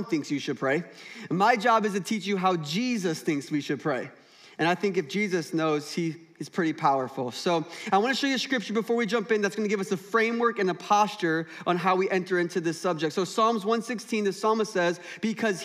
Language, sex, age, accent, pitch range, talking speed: English, male, 20-39, American, 185-240 Hz, 240 wpm